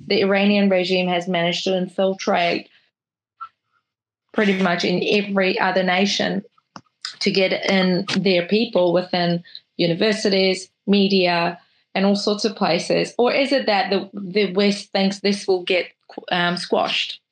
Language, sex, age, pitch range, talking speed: English, female, 20-39, 180-205 Hz, 135 wpm